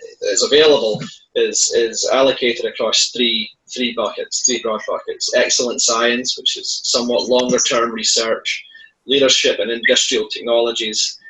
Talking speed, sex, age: 125 wpm, male, 30-49